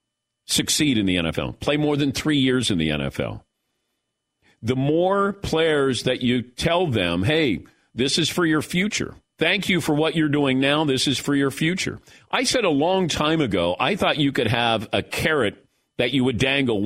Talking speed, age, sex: 190 wpm, 50-69, male